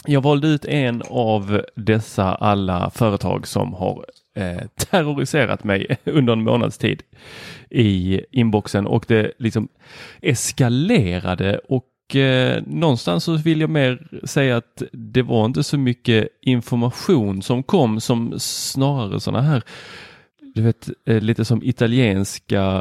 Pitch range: 110-135 Hz